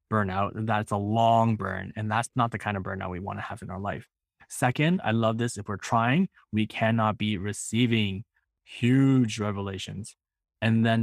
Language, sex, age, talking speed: English, male, 20-39, 185 wpm